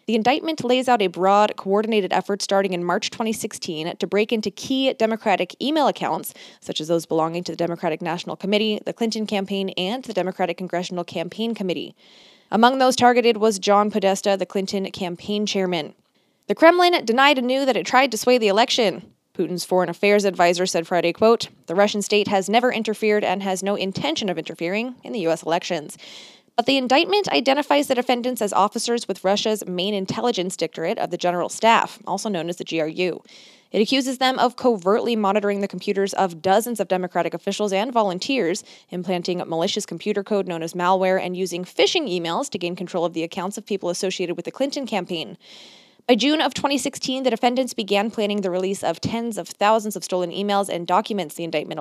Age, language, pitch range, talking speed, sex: 20-39, English, 180-230 Hz, 190 wpm, female